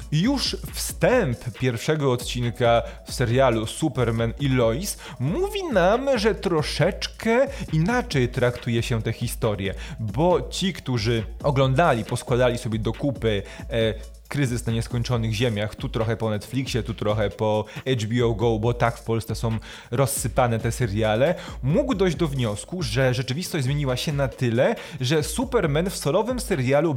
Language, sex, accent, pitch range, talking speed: Polish, male, native, 120-170 Hz, 140 wpm